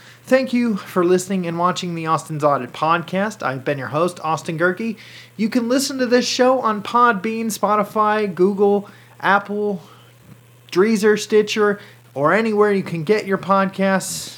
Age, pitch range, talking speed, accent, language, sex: 30-49, 145-190 Hz, 150 wpm, American, English, male